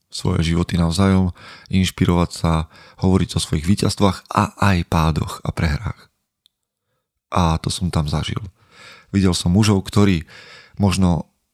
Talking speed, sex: 125 wpm, male